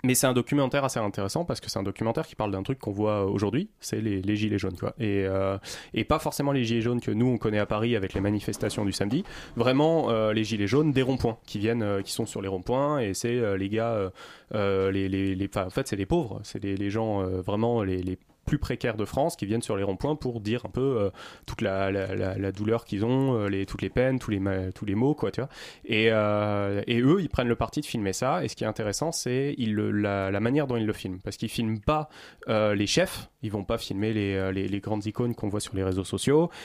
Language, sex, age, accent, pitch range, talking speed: French, male, 20-39, French, 100-125 Hz, 260 wpm